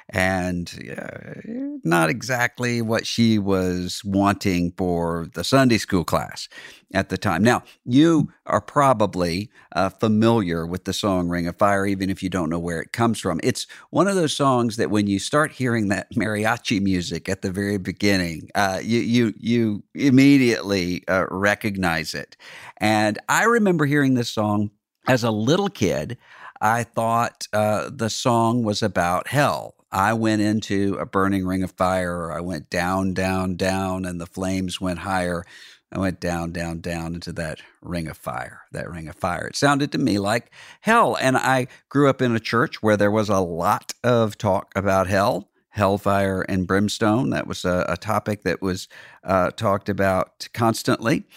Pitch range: 95-115 Hz